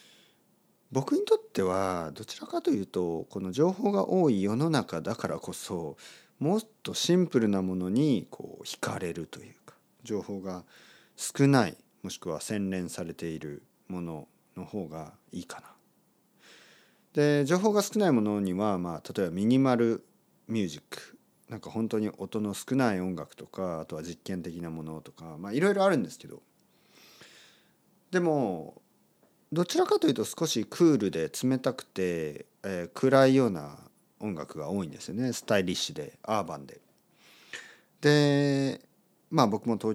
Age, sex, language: 40-59, male, Japanese